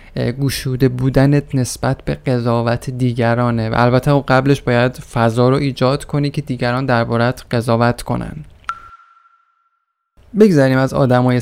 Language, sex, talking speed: Persian, male, 115 wpm